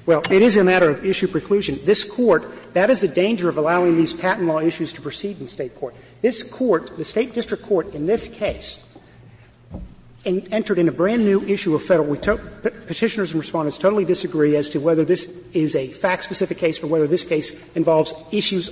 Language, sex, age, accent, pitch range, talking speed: English, male, 50-69, American, 165-200 Hz, 195 wpm